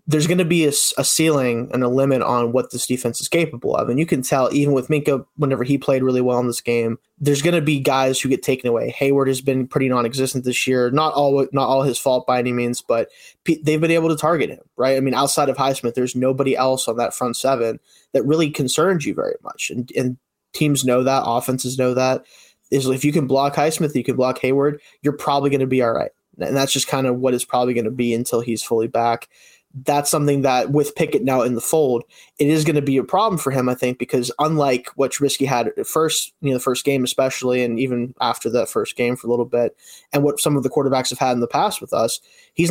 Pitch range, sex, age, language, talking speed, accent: 125-145 Hz, male, 20-39, English, 255 wpm, American